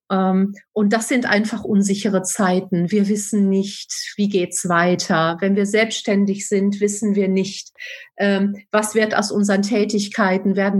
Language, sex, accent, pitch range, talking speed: German, female, German, 190-225 Hz, 145 wpm